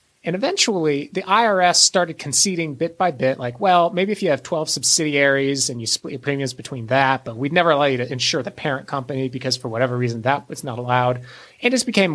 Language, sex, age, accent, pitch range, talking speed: English, male, 30-49, American, 130-165 Hz, 225 wpm